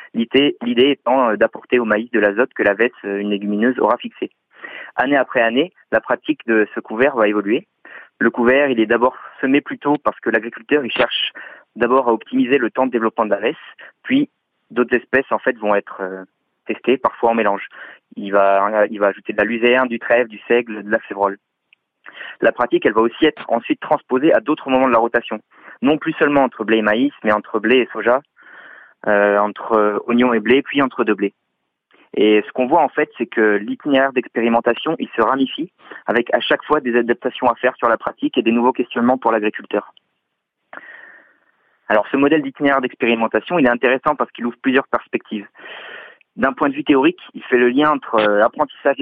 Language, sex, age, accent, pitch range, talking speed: French, male, 20-39, French, 110-135 Hz, 200 wpm